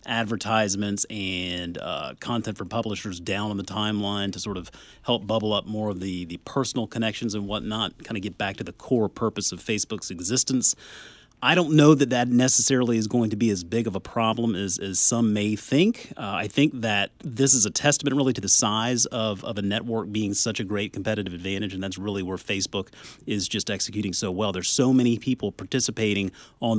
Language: English